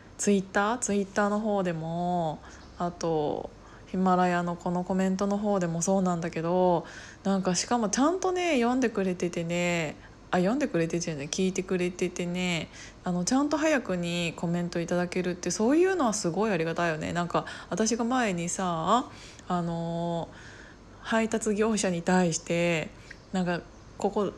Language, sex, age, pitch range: Japanese, female, 20-39, 170-230 Hz